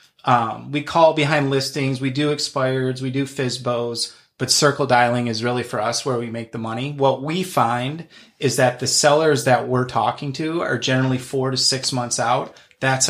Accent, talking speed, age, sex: American, 195 wpm, 30-49, male